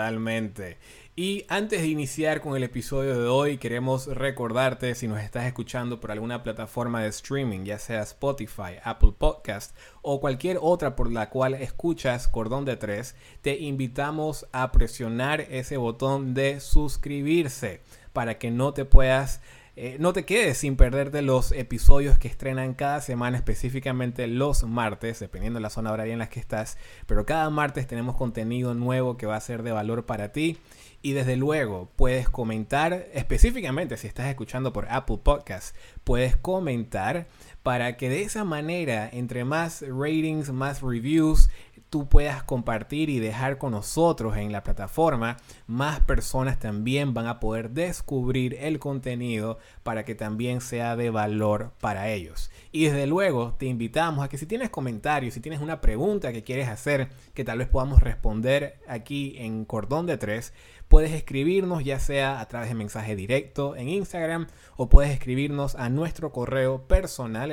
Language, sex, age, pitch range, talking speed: Spanish, male, 20-39, 115-140 Hz, 165 wpm